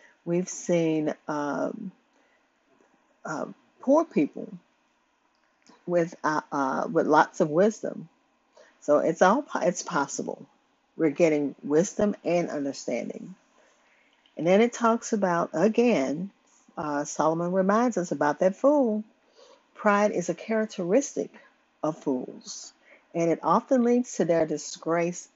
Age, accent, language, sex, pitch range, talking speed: 40-59, American, English, female, 165-240 Hz, 120 wpm